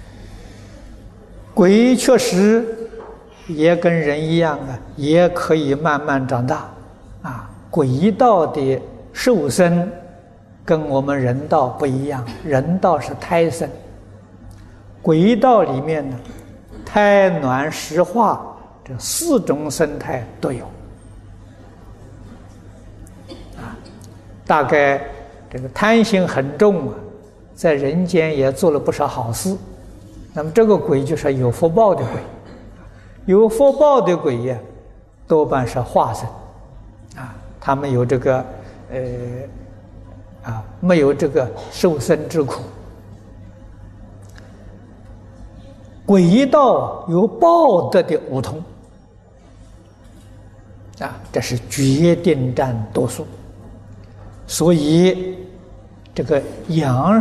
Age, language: 60-79, Chinese